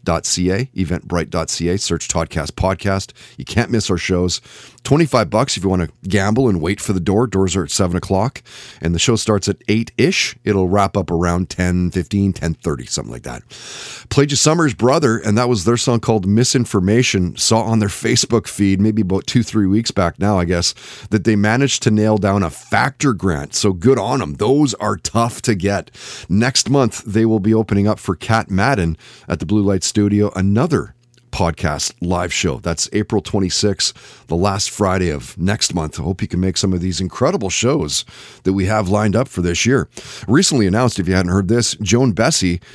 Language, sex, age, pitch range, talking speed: English, male, 30-49, 95-120 Hz, 200 wpm